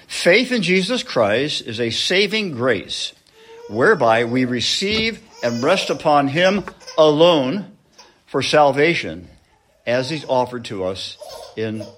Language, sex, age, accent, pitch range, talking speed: English, male, 60-79, American, 115-165 Hz, 120 wpm